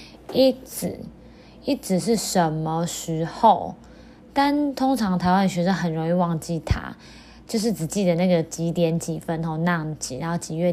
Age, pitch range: 20-39, 170-205 Hz